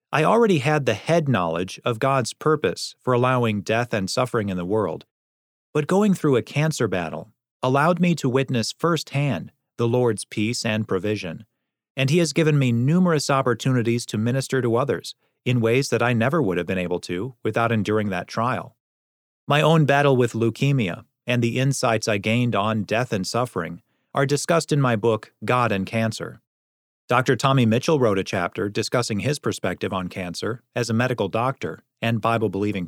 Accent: American